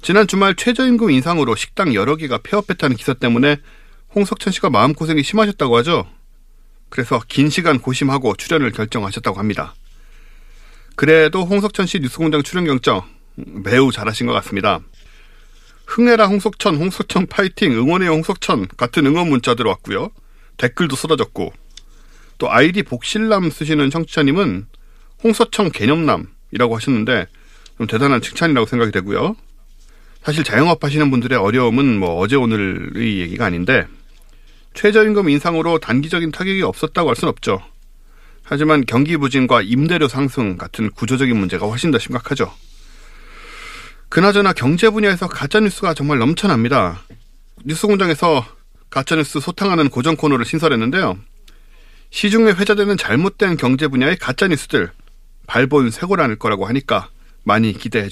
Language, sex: Korean, male